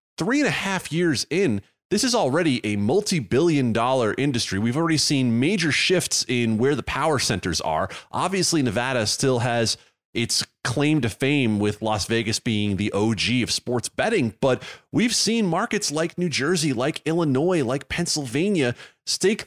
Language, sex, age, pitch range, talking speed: English, male, 30-49, 110-165 Hz, 165 wpm